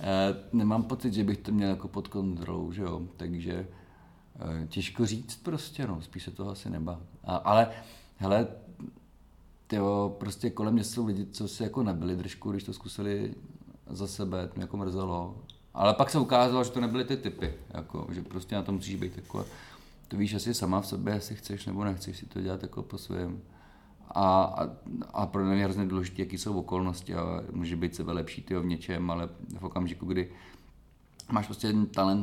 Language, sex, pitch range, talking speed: Czech, male, 90-105 Hz, 195 wpm